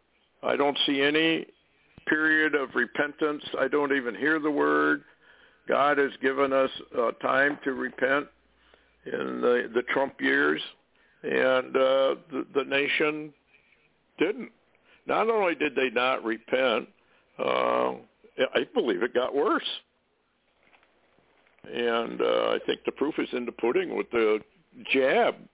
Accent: American